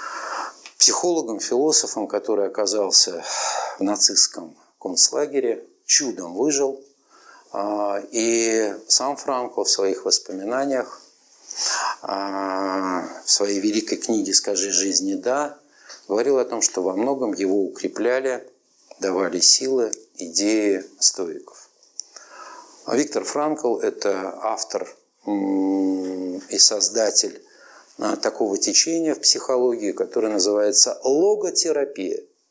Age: 50-69